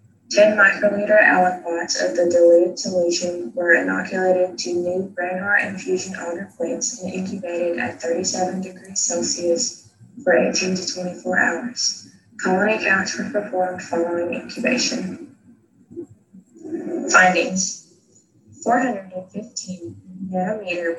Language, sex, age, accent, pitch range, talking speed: English, female, 20-39, American, 180-240 Hz, 100 wpm